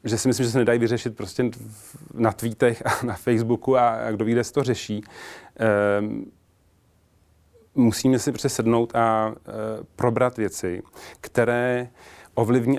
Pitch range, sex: 105-120 Hz, male